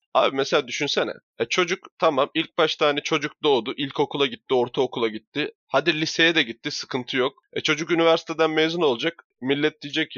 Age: 30-49